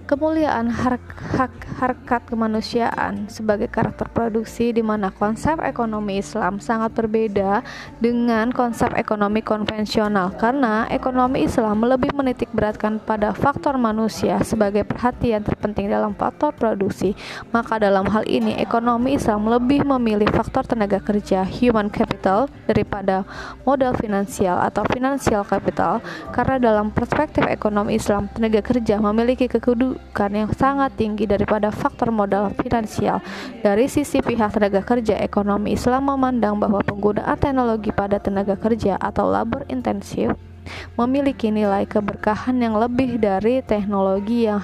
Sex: female